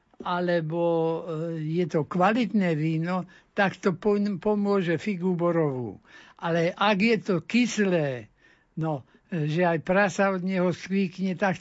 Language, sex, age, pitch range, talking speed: Slovak, male, 60-79, 160-190 Hz, 115 wpm